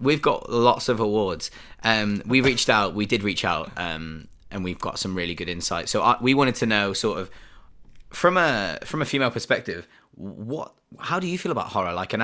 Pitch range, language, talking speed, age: 95-120 Hz, English, 210 wpm, 20-39